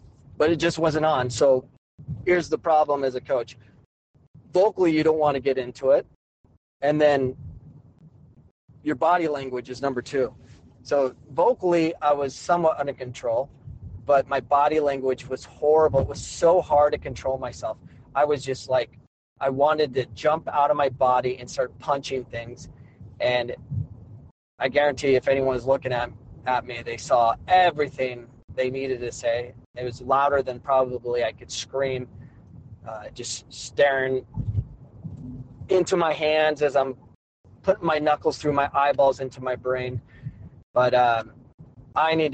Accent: American